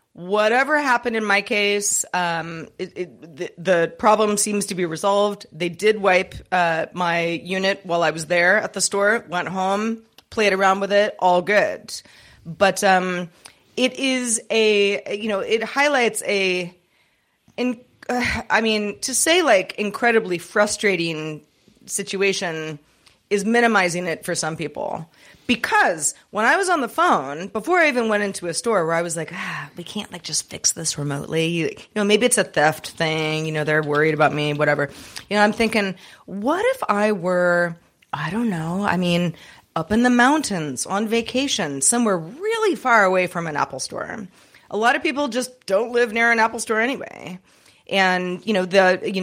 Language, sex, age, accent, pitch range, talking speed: English, female, 30-49, American, 175-225 Hz, 180 wpm